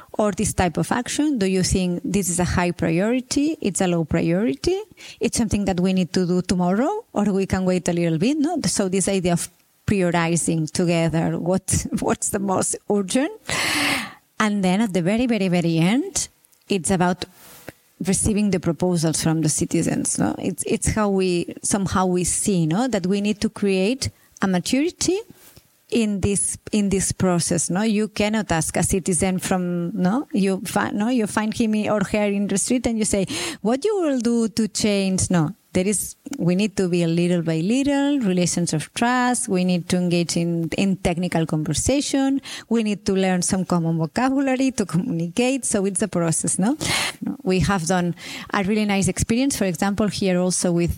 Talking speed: 185 wpm